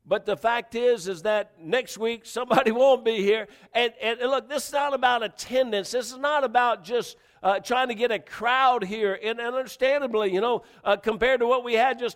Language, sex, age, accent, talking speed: English, male, 50-69, American, 210 wpm